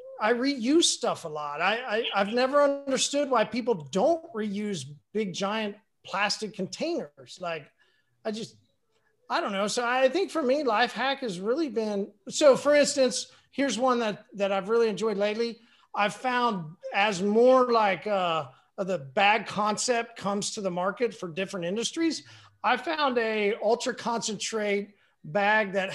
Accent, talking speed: American, 155 wpm